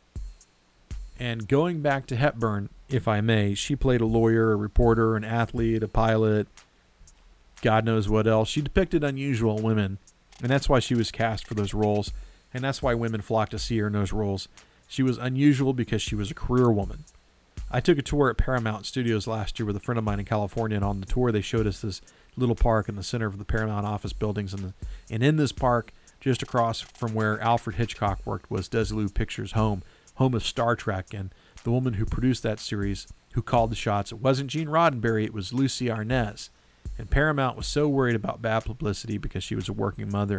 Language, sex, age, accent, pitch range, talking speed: English, male, 40-59, American, 105-120 Hz, 210 wpm